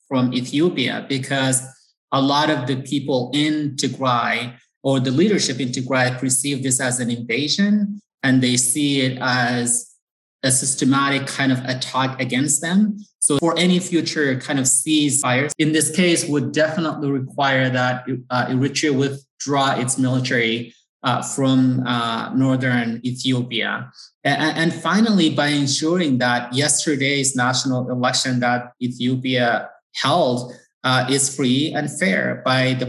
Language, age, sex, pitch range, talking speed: English, 20-39, male, 125-140 Hz, 130 wpm